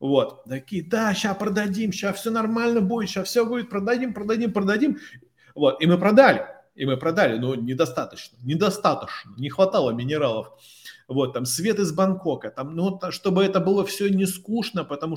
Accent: native